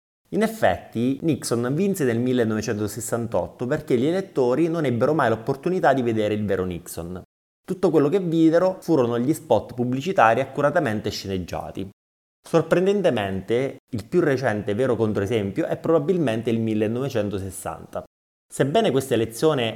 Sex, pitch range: male, 100-155 Hz